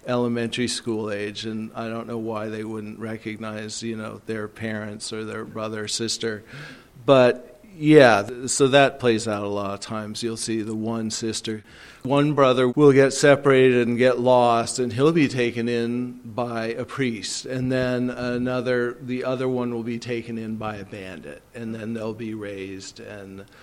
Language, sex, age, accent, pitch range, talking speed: English, male, 40-59, American, 110-125 Hz, 180 wpm